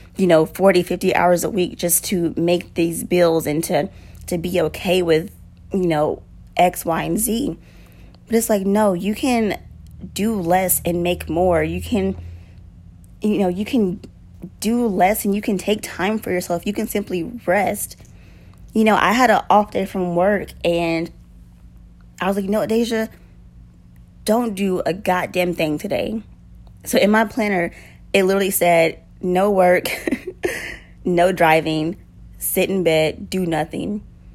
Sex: female